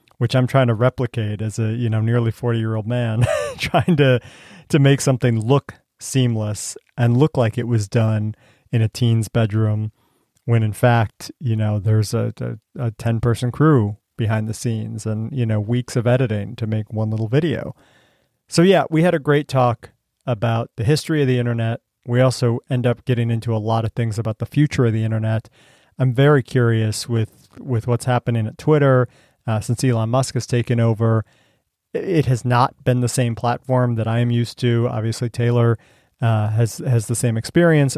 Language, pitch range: English, 110-125 Hz